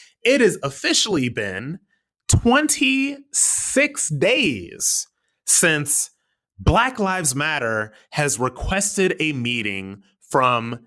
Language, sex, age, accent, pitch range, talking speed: English, male, 30-49, American, 120-205 Hz, 85 wpm